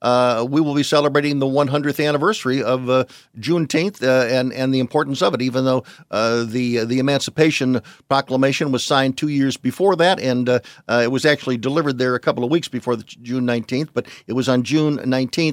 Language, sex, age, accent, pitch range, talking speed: English, male, 50-69, American, 125-150 Hz, 205 wpm